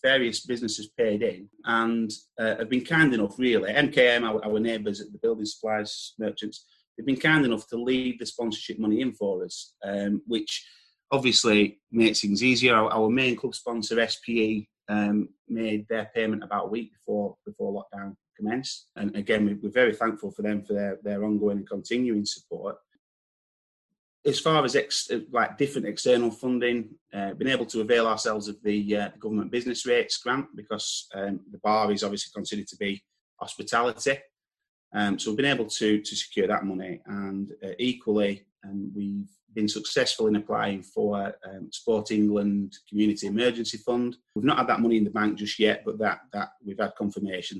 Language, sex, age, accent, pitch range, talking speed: English, male, 30-49, British, 105-120 Hz, 180 wpm